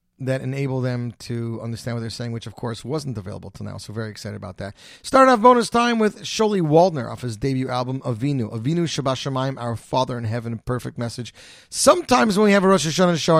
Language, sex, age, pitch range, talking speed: English, male, 30-49, 115-155 Hz, 220 wpm